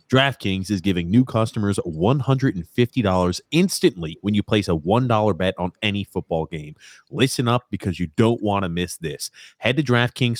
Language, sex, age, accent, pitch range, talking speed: English, male, 30-49, American, 90-125 Hz, 165 wpm